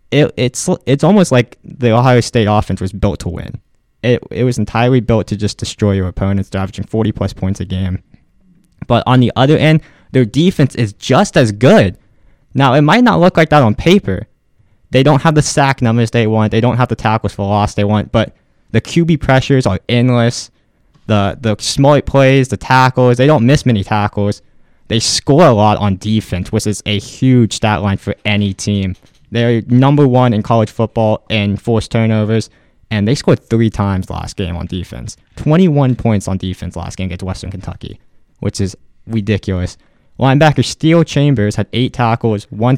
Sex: male